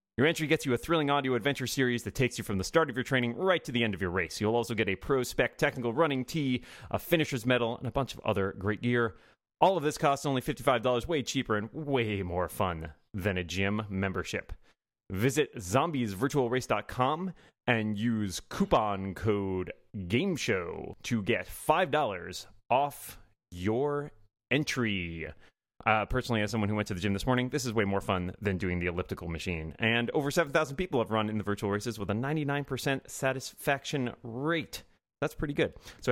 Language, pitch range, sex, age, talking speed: English, 100-135 Hz, male, 30-49, 185 wpm